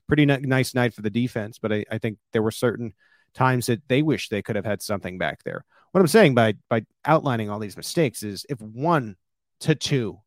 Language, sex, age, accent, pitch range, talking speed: English, male, 40-59, American, 105-140 Hz, 220 wpm